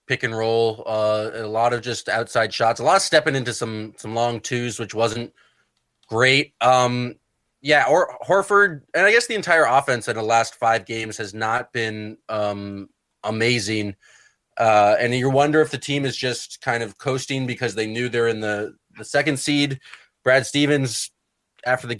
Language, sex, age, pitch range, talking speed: English, male, 20-39, 115-135 Hz, 185 wpm